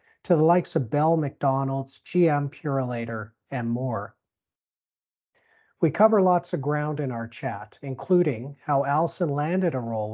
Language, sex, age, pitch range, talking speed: English, male, 50-69, 125-160 Hz, 140 wpm